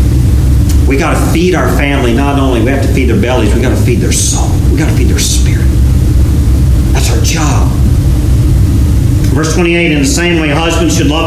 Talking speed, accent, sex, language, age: 200 wpm, American, male, English, 40-59